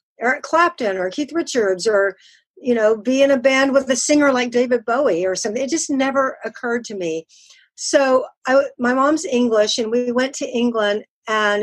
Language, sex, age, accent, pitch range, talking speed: English, female, 50-69, American, 195-255 Hz, 190 wpm